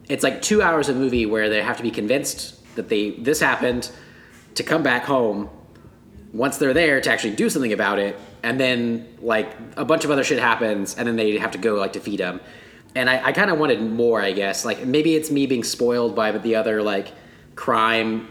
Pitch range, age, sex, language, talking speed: 105-130 Hz, 20-39, male, English, 225 wpm